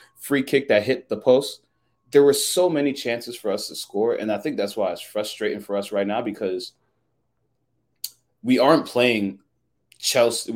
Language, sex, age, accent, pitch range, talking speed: English, male, 30-49, American, 105-135 Hz, 175 wpm